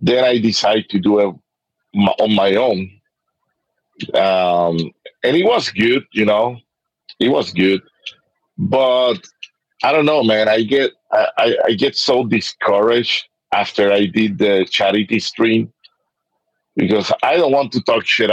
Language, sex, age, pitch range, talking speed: English, male, 50-69, 95-120 Hz, 145 wpm